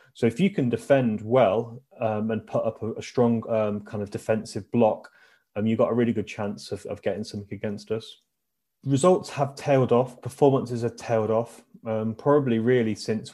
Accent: British